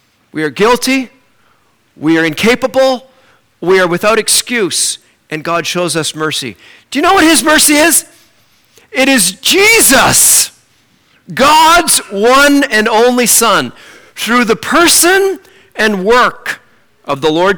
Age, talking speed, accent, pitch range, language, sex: 40-59, 130 wpm, American, 160-265 Hz, English, male